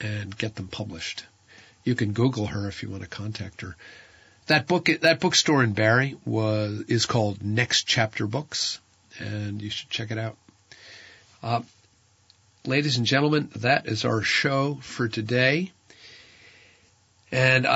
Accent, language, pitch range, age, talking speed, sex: American, English, 105-130 Hz, 50-69, 145 wpm, male